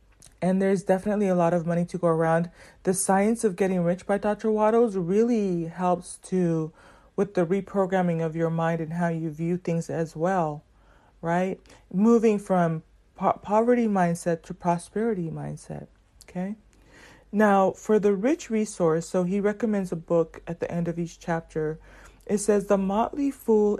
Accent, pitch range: American, 170-200 Hz